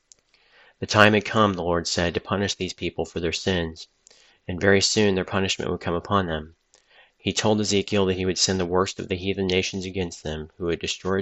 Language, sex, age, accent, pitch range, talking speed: English, male, 30-49, American, 85-95 Hz, 220 wpm